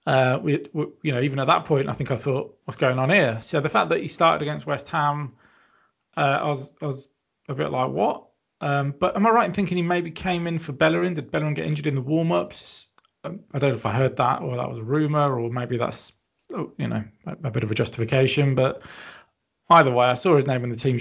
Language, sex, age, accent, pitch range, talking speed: English, male, 30-49, British, 130-160 Hz, 255 wpm